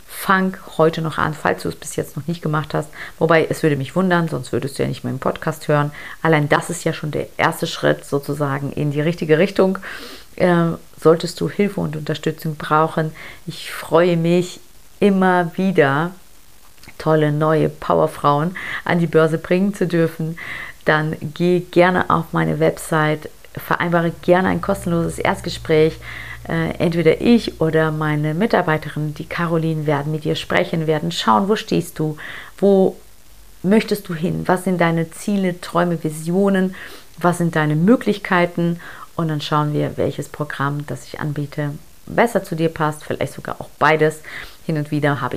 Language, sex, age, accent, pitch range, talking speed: German, female, 40-59, German, 150-175 Hz, 165 wpm